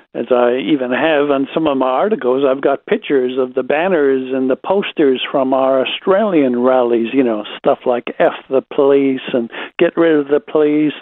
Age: 60-79